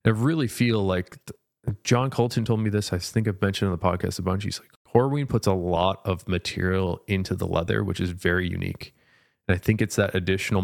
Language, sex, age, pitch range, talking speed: English, male, 30-49, 95-115 Hz, 220 wpm